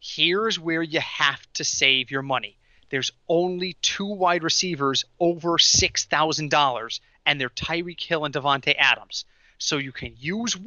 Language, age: English, 30-49